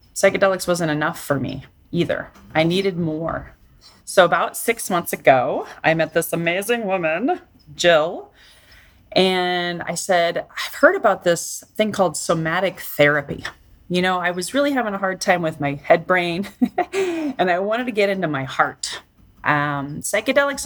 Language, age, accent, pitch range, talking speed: English, 30-49, American, 145-185 Hz, 155 wpm